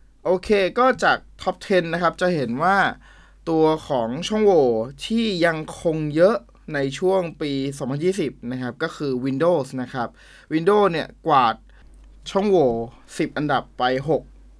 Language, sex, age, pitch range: Thai, male, 20-39, 125-155 Hz